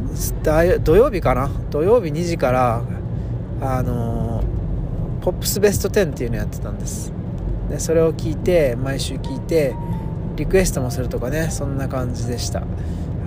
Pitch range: 115-150 Hz